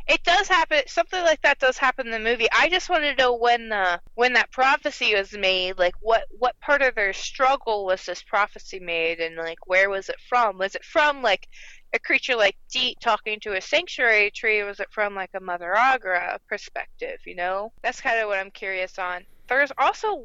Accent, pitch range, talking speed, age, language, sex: American, 195-270 Hz, 215 wpm, 20-39, English, female